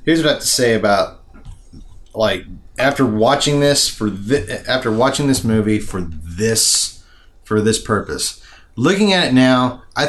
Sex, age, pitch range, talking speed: male, 30-49, 105-135 Hz, 160 wpm